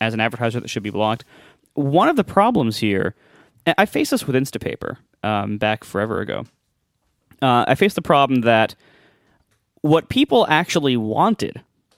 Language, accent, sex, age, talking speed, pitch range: English, American, male, 20-39, 155 wpm, 115-145 Hz